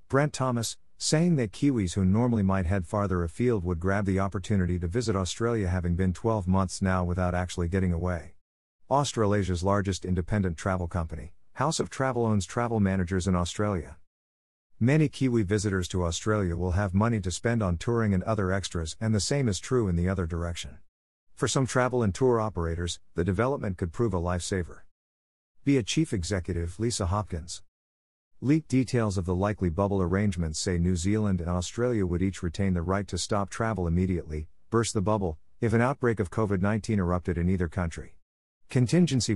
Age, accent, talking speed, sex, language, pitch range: 50-69, American, 175 wpm, male, English, 90-110 Hz